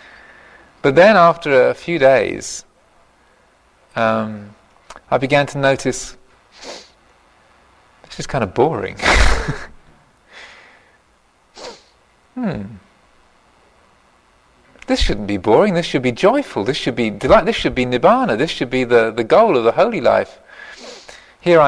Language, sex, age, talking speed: English, male, 40-59, 120 wpm